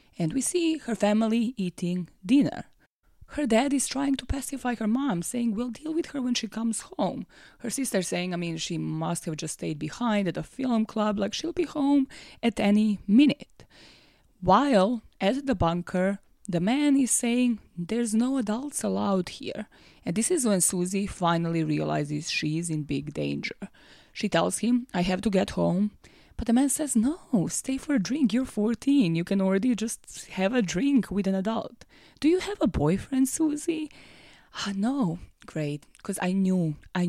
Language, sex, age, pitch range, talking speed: English, female, 20-39, 175-245 Hz, 185 wpm